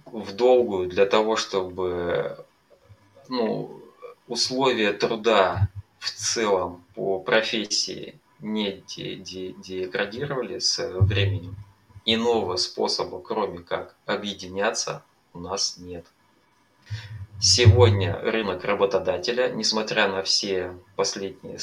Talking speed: 85 wpm